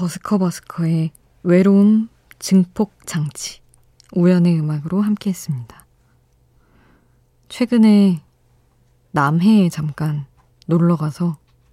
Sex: female